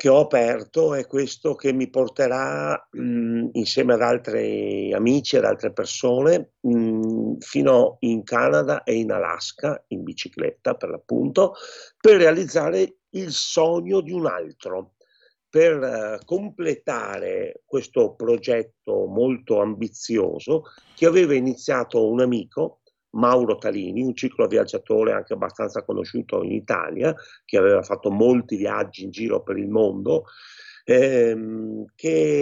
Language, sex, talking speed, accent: Italian, male, 125 wpm, native